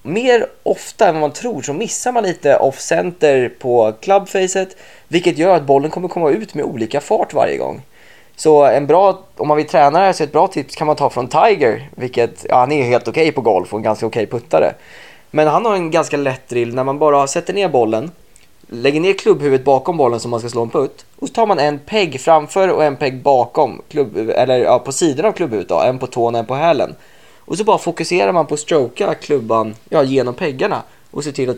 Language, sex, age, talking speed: Swedish, male, 20-39, 230 wpm